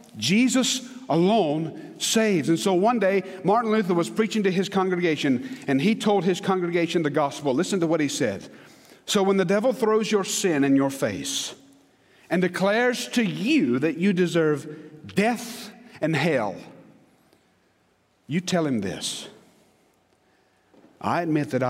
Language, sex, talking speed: English, male, 145 wpm